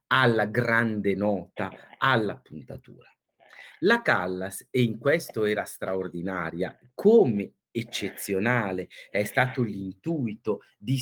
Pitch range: 105-135 Hz